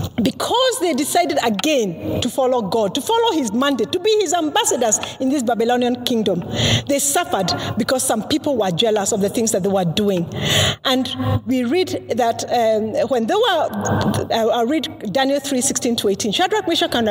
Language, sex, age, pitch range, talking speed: English, female, 50-69, 245-390 Hz, 180 wpm